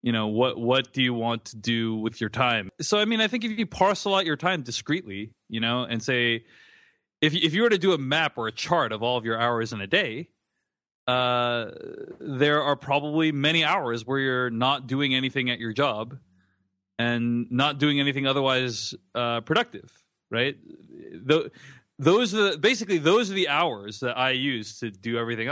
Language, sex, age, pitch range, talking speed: English, male, 30-49, 110-150 Hz, 200 wpm